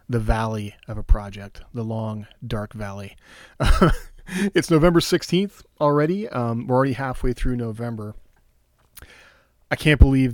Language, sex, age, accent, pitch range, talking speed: English, male, 30-49, American, 110-130 Hz, 130 wpm